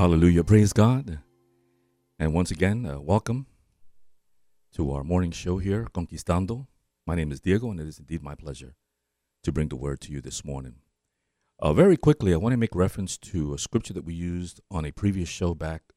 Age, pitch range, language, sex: 50-69, 70-110 Hz, English, male